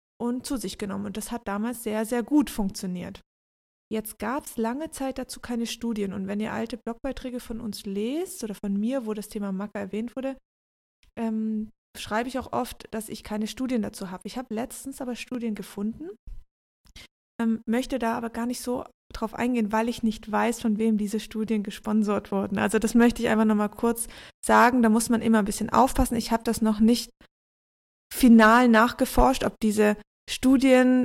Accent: German